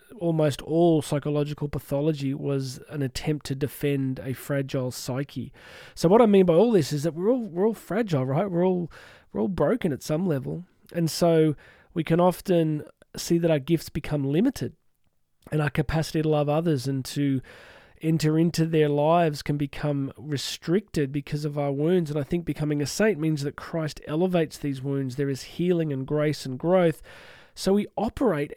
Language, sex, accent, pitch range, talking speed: English, male, Australian, 150-175 Hz, 185 wpm